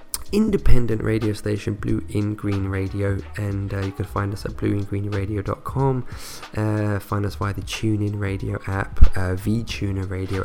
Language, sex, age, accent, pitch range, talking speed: English, male, 20-39, British, 95-110 Hz, 155 wpm